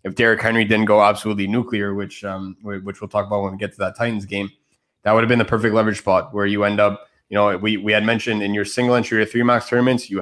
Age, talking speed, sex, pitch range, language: 20-39, 275 wpm, male, 100-115 Hz, English